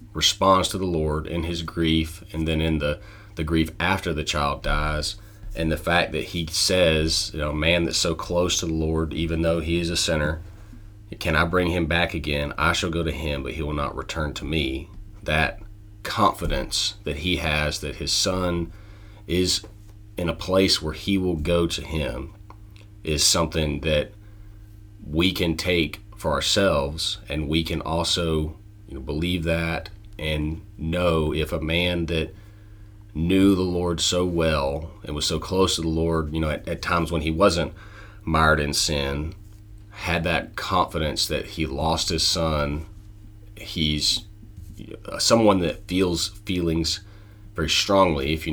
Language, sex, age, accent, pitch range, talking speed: English, male, 30-49, American, 80-100 Hz, 165 wpm